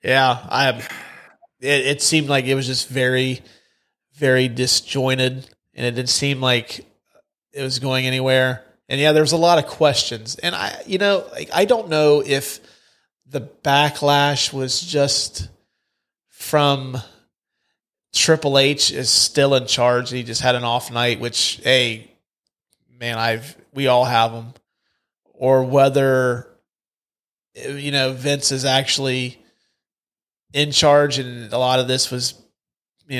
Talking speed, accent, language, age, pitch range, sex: 145 wpm, American, English, 30-49, 120-140 Hz, male